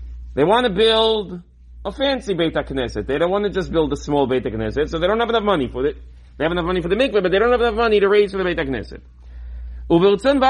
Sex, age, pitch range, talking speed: male, 40-59, 155-235 Hz, 200 wpm